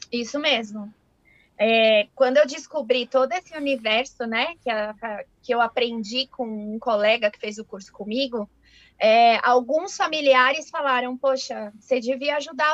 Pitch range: 235-300 Hz